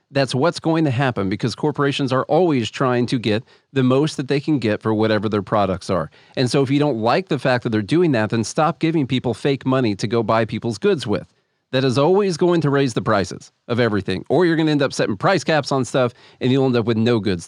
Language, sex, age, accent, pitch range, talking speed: English, male, 40-59, American, 120-155 Hz, 255 wpm